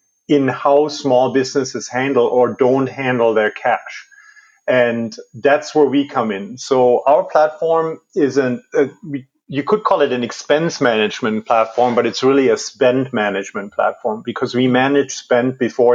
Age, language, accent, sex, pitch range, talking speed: 30-49, English, German, male, 120-160 Hz, 155 wpm